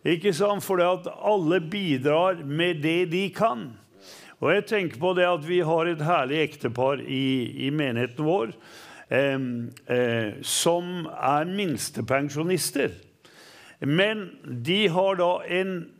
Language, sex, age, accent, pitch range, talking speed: English, male, 50-69, Swedish, 145-190 Hz, 140 wpm